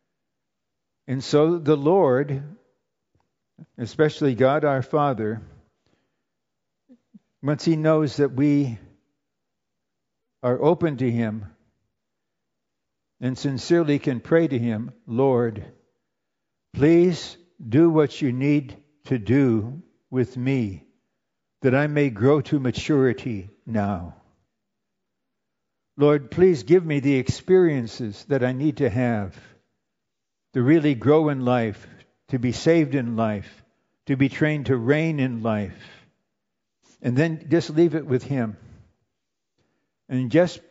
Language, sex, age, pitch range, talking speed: English, male, 60-79, 120-150 Hz, 115 wpm